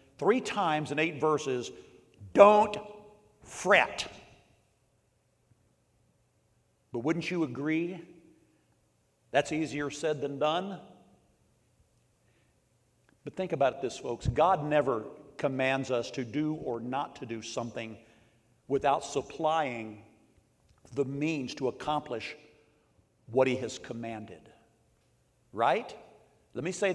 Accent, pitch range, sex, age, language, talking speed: American, 120-180 Hz, male, 50-69, English, 100 wpm